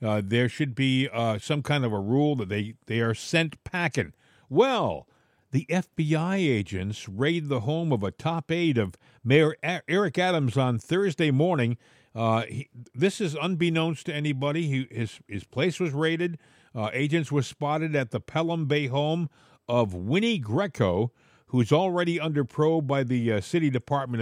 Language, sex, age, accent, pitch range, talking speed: English, male, 50-69, American, 120-160 Hz, 165 wpm